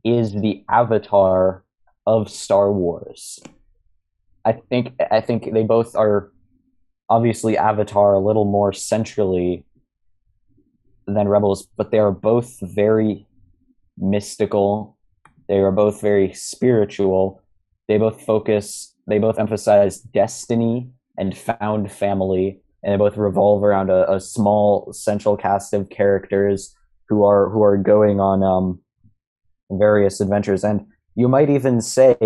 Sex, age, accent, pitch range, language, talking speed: male, 20-39, American, 95-110 Hz, English, 125 wpm